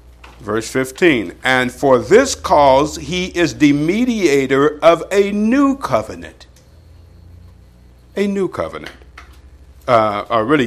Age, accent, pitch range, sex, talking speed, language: 60-79, American, 105-170 Hz, male, 110 wpm, English